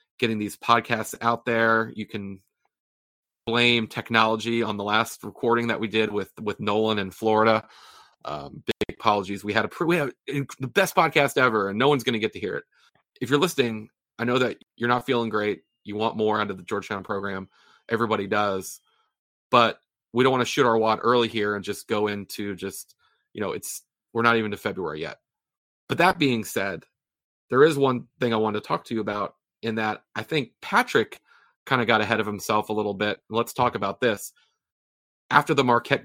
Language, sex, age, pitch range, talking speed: English, male, 30-49, 105-115 Hz, 205 wpm